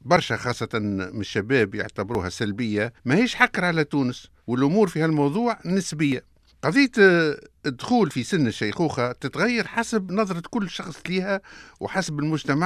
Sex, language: male, French